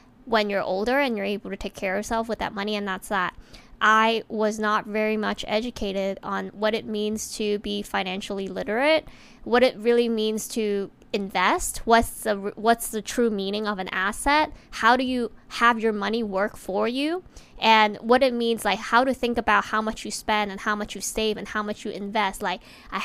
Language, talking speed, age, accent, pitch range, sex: English, 210 wpm, 10-29, American, 210-245 Hz, female